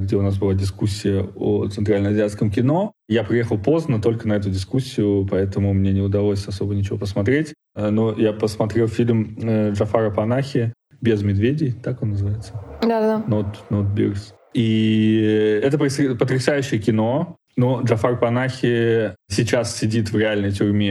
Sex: male